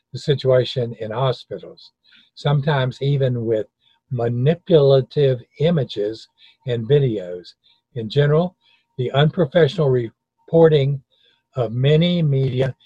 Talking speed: 90 wpm